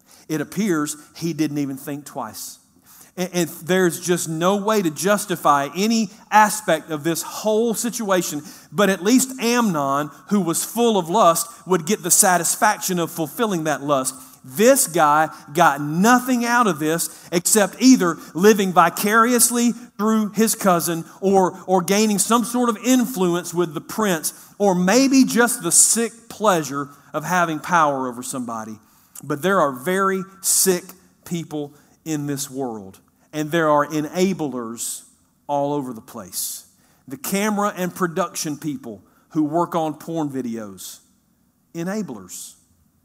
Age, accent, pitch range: 40-59, American, 150-205 Hz